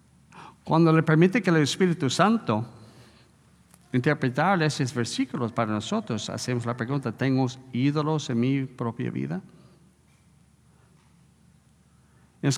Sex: male